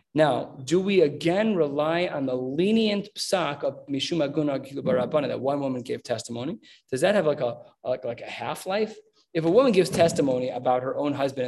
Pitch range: 130-165 Hz